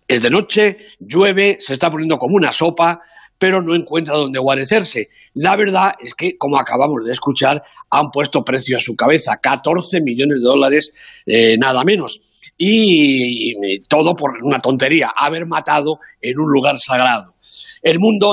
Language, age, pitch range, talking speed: Spanish, 50-69, 135-170 Hz, 165 wpm